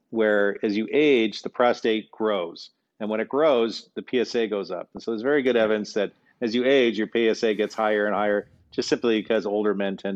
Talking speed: 220 wpm